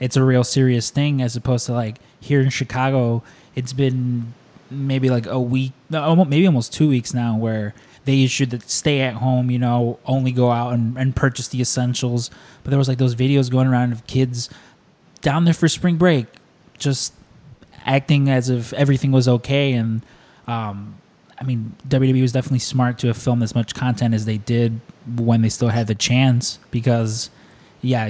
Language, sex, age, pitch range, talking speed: English, male, 20-39, 120-140 Hz, 185 wpm